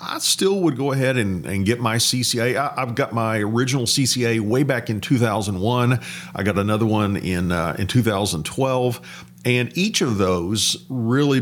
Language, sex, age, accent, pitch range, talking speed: English, male, 40-59, American, 110-140 Hz, 165 wpm